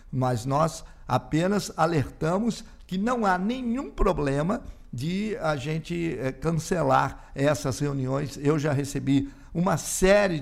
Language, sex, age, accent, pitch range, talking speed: Portuguese, male, 50-69, Brazilian, 130-180 Hz, 115 wpm